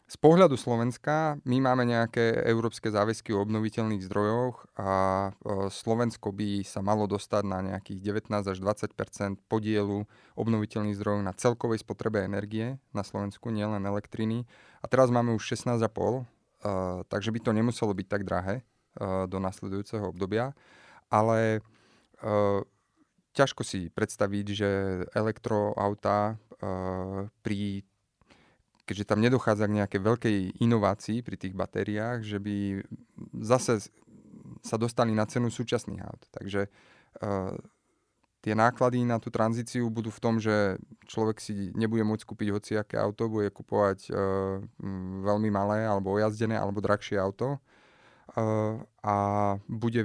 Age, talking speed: 30-49, 125 wpm